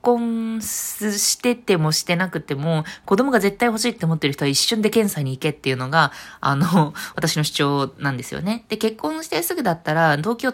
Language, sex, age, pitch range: Japanese, female, 20-39, 155-225 Hz